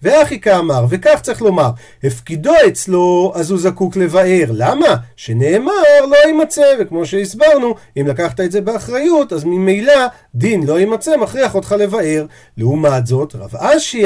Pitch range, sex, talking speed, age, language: 155-225 Hz, male, 145 wpm, 50-69, Hebrew